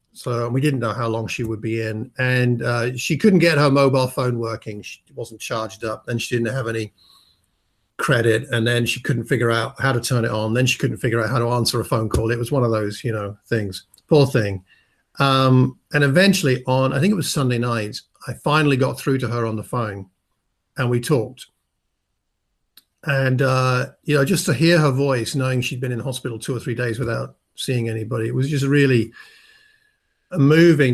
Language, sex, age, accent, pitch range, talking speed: English, male, 50-69, British, 115-140 Hz, 210 wpm